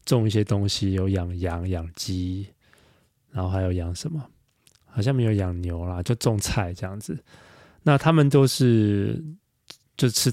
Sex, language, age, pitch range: male, Chinese, 20-39, 95-125 Hz